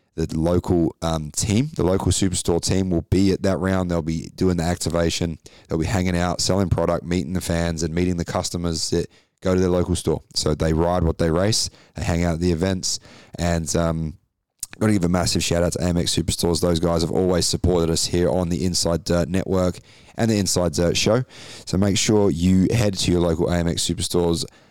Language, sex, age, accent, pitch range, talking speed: English, male, 20-39, Australian, 85-95 Hz, 215 wpm